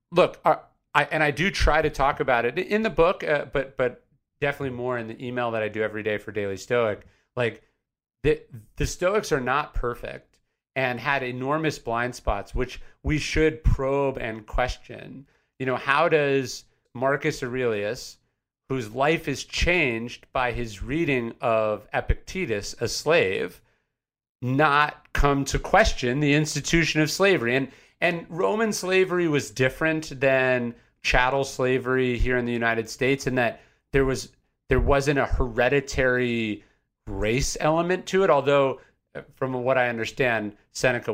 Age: 40-59